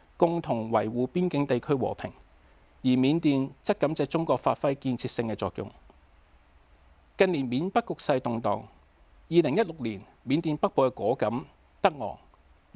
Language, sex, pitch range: Chinese, male, 95-165 Hz